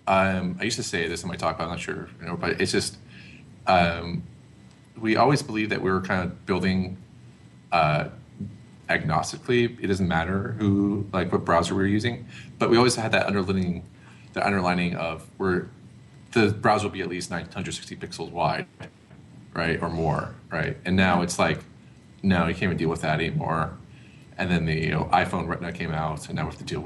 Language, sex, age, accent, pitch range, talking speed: English, male, 30-49, American, 90-110 Hz, 200 wpm